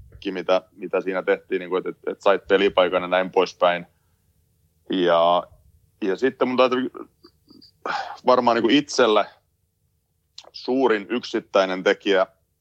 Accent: native